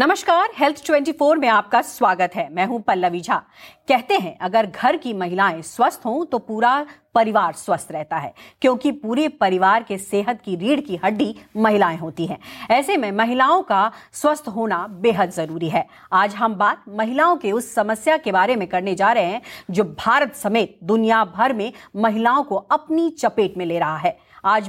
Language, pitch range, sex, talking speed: English, 195-265 Hz, female, 145 wpm